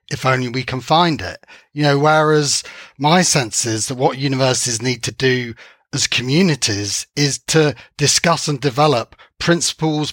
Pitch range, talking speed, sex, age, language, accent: 125-150 Hz, 155 wpm, male, 40-59, English, British